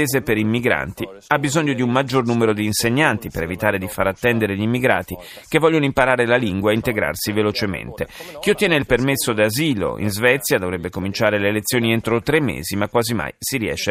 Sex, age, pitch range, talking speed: male, 30-49, 105-145 Hz, 190 wpm